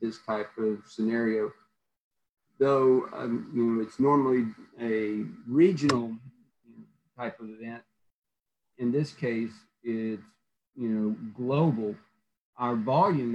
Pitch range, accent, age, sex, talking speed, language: 110-125 Hz, American, 40-59, male, 90 wpm, English